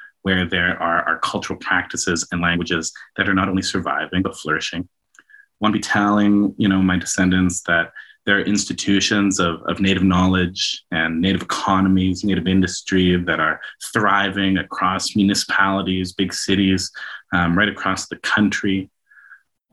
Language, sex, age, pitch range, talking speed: English, male, 30-49, 90-100 Hz, 150 wpm